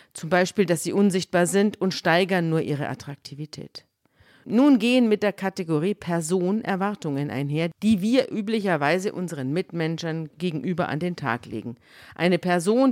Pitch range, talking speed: 145-195 Hz, 145 wpm